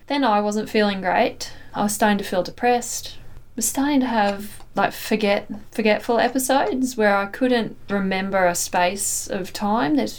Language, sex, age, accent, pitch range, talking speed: English, female, 10-29, Australian, 180-215 Hz, 170 wpm